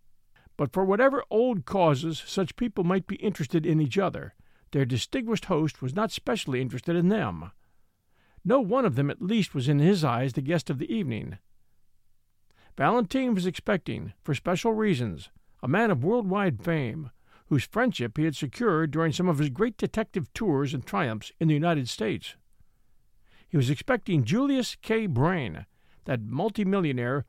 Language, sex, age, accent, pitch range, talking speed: English, male, 50-69, American, 130-200 Hz, 165 wpm